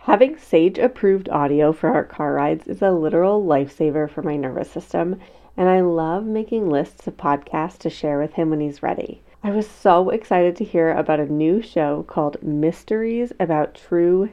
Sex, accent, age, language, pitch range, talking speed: female, American, 30-49, English, 160-205 Hz, 180 wpm